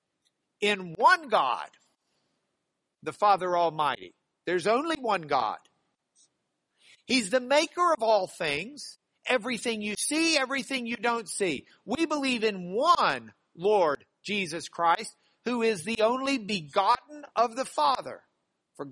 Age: 50-69